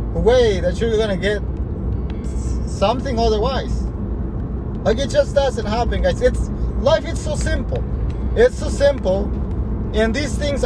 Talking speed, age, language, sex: 135 wpm, 30-49, English, male